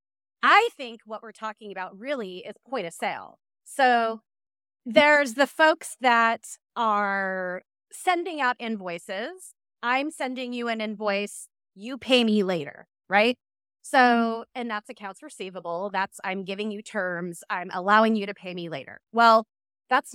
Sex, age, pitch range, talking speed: female, 30-49, 180-235 Hz, 145 wpm